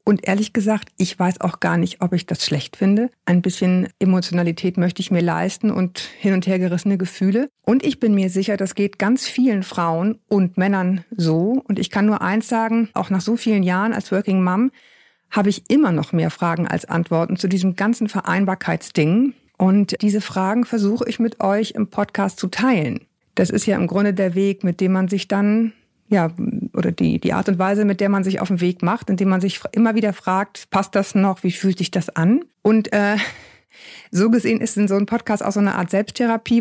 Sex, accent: female, German